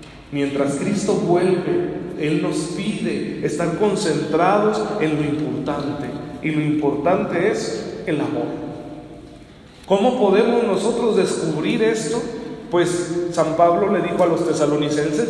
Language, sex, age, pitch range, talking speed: Spanish, male, 40-59, 150-205 Hz, 120 wpm